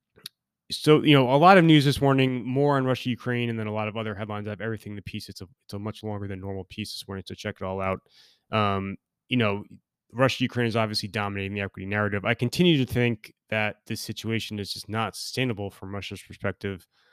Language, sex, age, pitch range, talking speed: English, male, 20-39, 95-115 Hz, 230 wpm